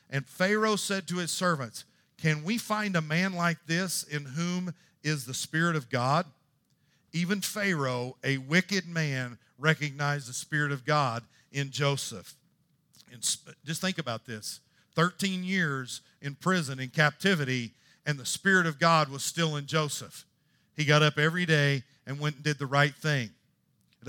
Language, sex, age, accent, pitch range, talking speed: English, male, 50-69, American, 140-180 Hz, 160 wpm